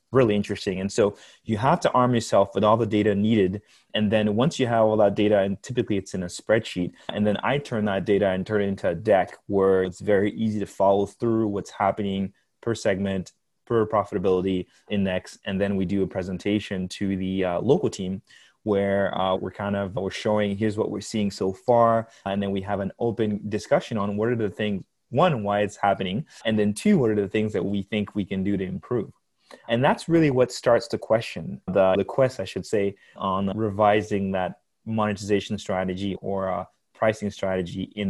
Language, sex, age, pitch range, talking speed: English, male, 20-39, 95-110 Hz, 205 wpm